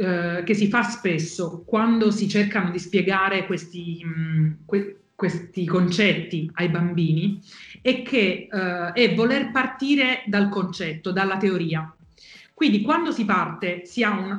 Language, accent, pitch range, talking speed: Italian, native, 185-225 Hz, 120 wpm